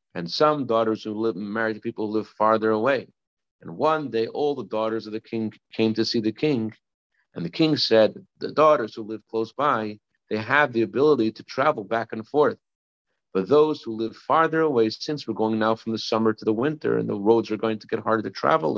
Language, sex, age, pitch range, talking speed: English, male, 50-69, 110-125 Hz, 225 wpm